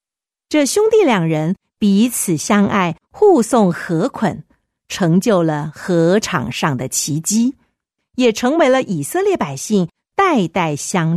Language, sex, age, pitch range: Chinese, female, 50-69, 165-245 Hz